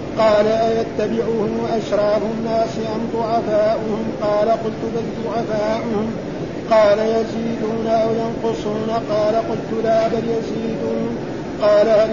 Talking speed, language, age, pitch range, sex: 105 wpm, Arabic, 50-69, 215-230 Hz, male